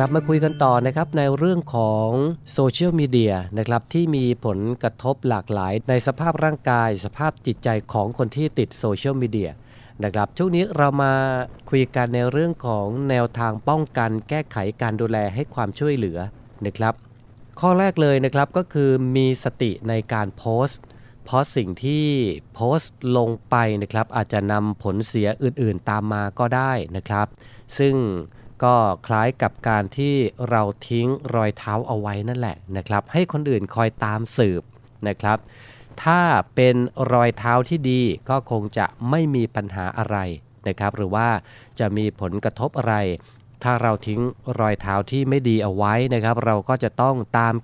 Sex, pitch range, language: male, 110-135 Hz, Thai